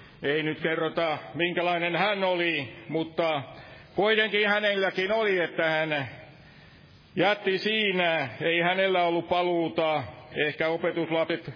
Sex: male